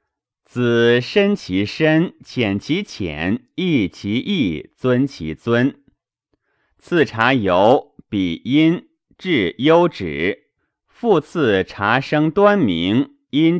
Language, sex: Chinese, male